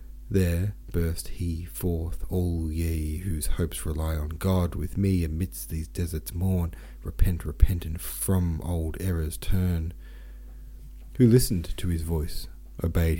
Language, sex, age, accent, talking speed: English, male, 40-59, Australian, 135 wpm